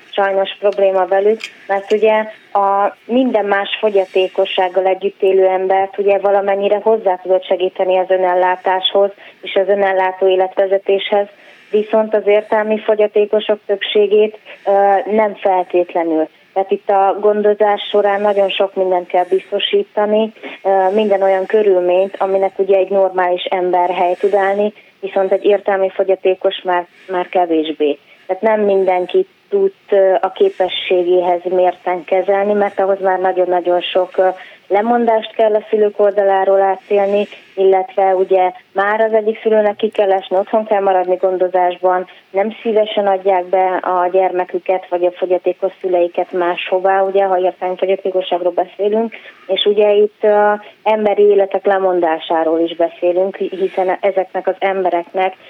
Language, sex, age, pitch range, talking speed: Hungarian, female, 20-39, 185-205 Hz, 130 wpm